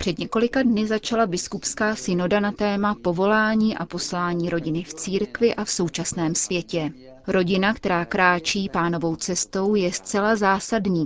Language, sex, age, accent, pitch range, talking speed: Czech, female, 30-49, native, 175-210 Hz, 140 wpm